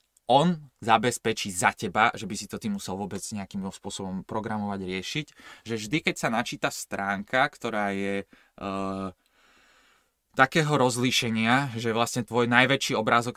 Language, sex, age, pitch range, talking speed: Slovak, male, 20-39, 100-125 Hz, 135 wpm